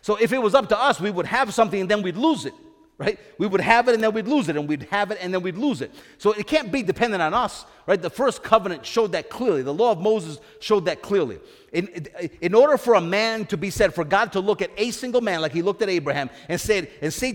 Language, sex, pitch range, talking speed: English, male, 185-245 Hz, 285 wpm